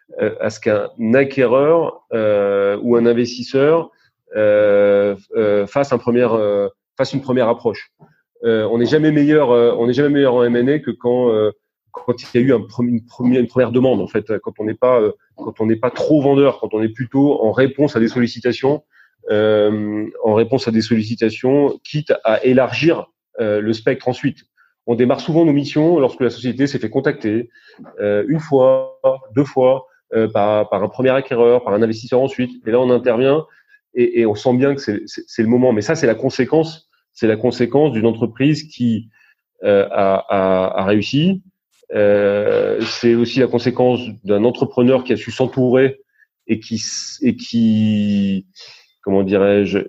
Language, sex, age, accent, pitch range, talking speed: French, male, 30-49, French, 110-135 Hz, 180 wpm